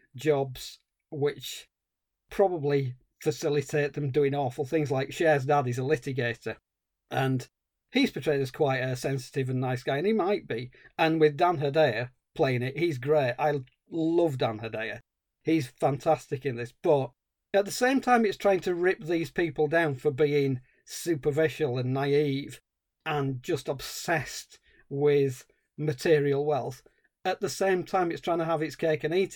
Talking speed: 160 wpm